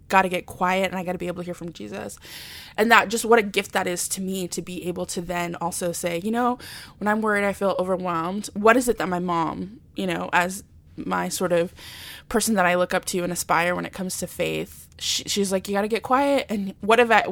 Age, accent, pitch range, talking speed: 20-39, American, 185-230 Hz, 255 wpm